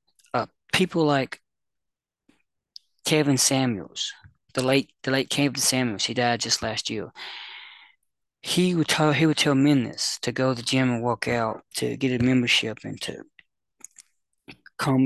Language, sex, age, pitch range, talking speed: English, male, 20-39, 115-140 Hz, 150 wpm